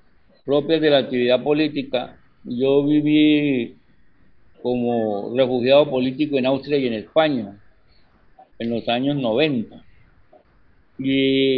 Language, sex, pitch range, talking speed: Spanish, male, 130-160 Hz, 105 wpm